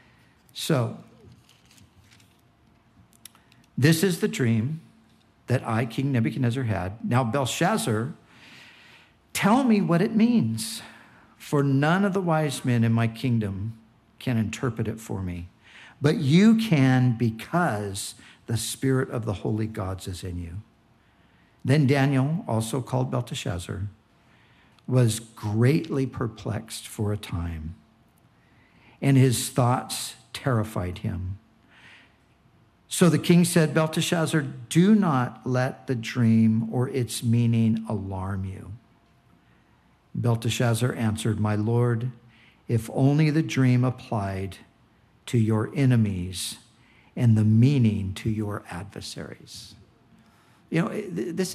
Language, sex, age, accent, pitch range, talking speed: English, male, 60-79, American, 110-135 Hz, 110 wpm